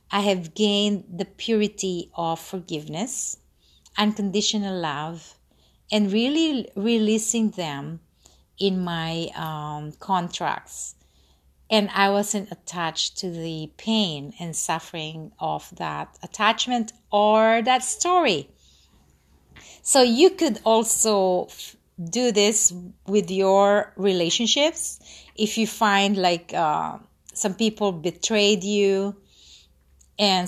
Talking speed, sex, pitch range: 100 wpm, female, 155-215 Hz